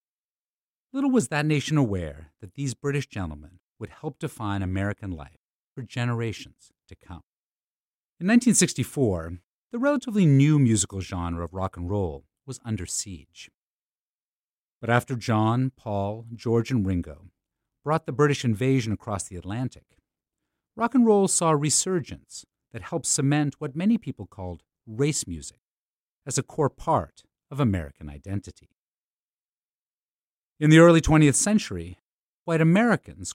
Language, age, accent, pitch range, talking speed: English, 50-69, American, 95-145 Hz, 135 wpm